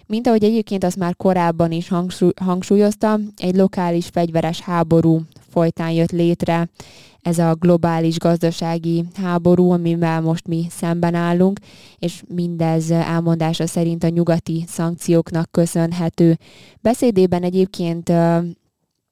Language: Hungarian